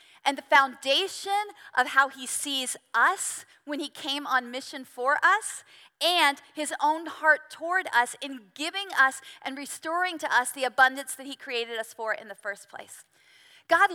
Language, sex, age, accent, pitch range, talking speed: English, female, 40-59, American, 265-320 Hz, 170 wpm